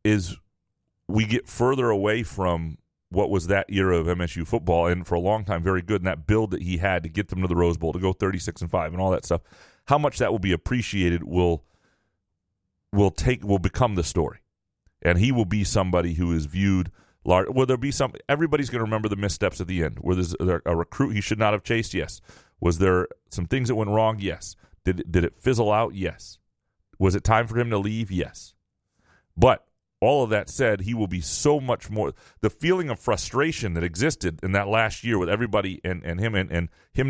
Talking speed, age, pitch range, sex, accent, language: 225 wpm, 30-49, 90-110 Hz, male, American, English